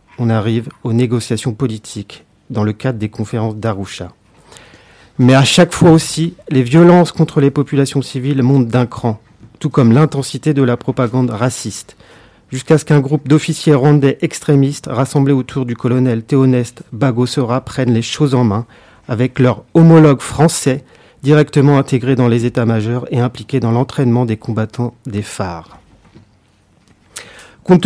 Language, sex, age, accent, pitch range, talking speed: French, male, 40-59, French, 115-140 Hz, 150 wpm